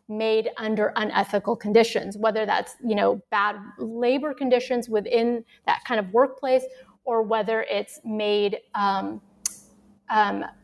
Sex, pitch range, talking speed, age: female, 215-250 Hz, 125 wpm, 30-49